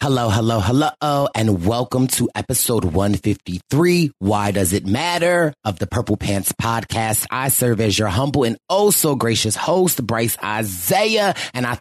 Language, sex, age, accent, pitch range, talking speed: English, male, 30-49, American, 105-150 Hz, 160 wpm